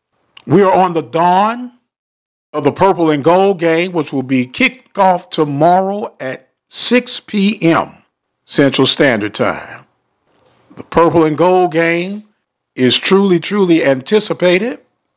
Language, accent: English, American